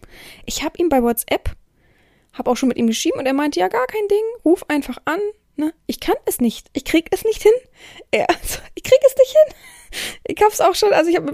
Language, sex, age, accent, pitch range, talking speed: German, female, 20-39, German, 255-345 Hz, 250 wpm